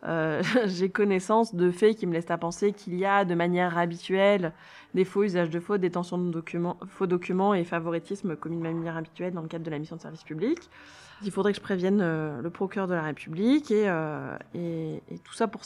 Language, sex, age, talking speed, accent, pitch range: French, female, 20-39, 225 wpm, French, 170-205 Hz